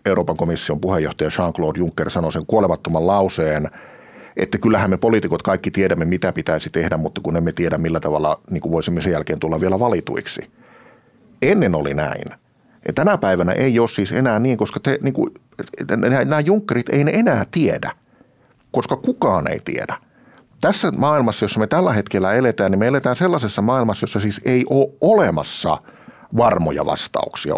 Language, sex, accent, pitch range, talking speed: Finnish, male, native, 90-125 Hz, 150 wpm